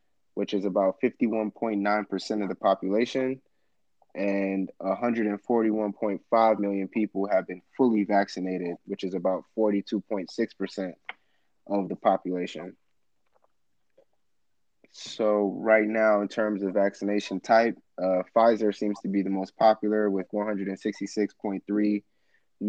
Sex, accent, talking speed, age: male, American, 105 wpm, 20-39